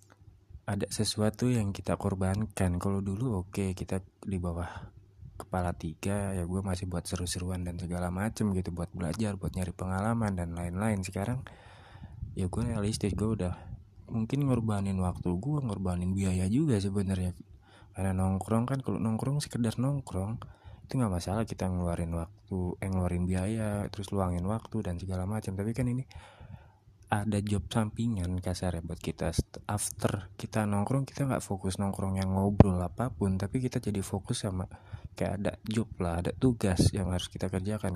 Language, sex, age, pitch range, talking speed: Indonesian, male, 20-39, 95-110 Hz, 160 wpm